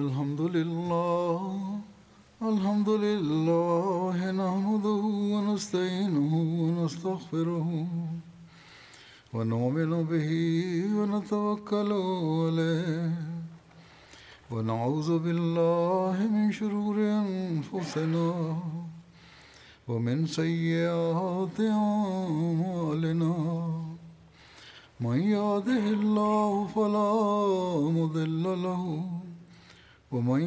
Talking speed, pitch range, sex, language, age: 50 wpm, 165-205 Hz, male, Arabic, 60-79